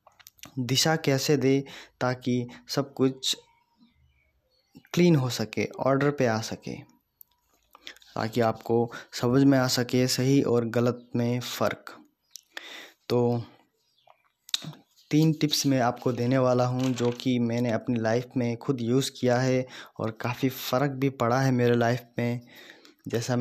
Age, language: 20-39, Hindi